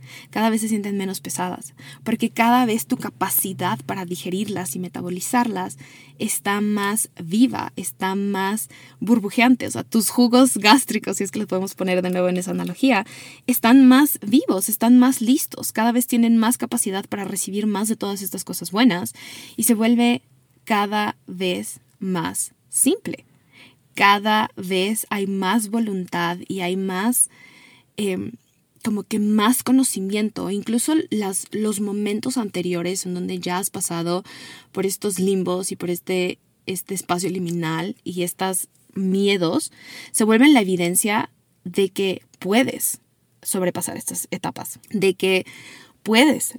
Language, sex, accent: Spanish, female, Mexican